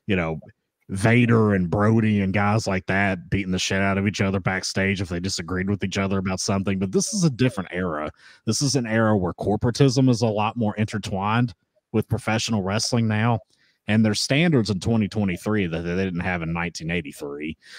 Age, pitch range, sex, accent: 30-49, 95-125 Hz, male, American